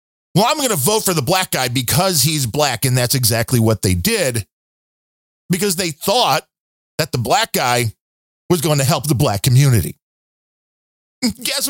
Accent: American